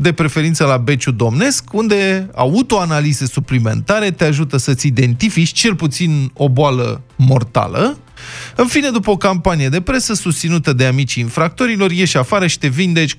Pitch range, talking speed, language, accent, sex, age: 125-185 Hz, 150 wpm, Romanian, native, male, 20-39